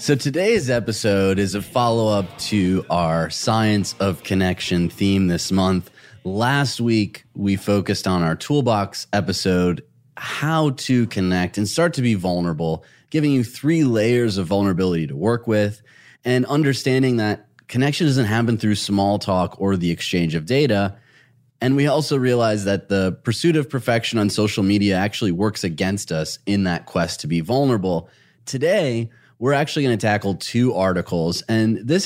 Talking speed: 160 wpm